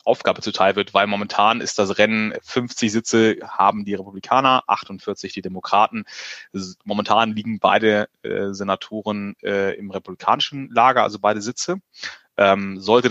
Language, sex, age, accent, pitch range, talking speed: German, male, 30-49, German, 95-110 Hz, 135 wpm